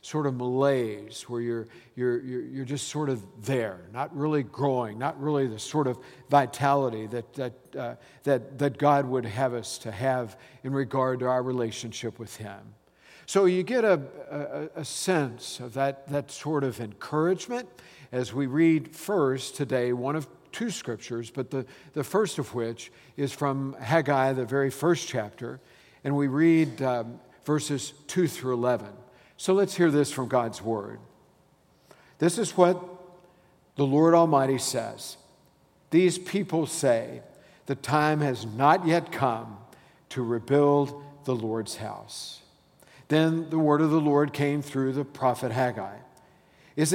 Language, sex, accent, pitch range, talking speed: English, male, American, 125-155 Hz, 155 wpm